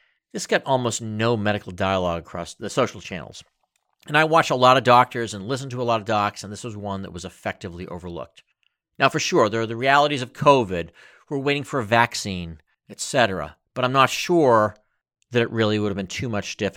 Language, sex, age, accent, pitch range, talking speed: English, male, 50-69, American, 100-135 Hz, 220 wpm